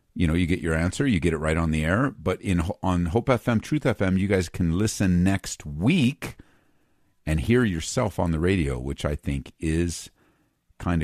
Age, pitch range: 50-69, 85-105 Hz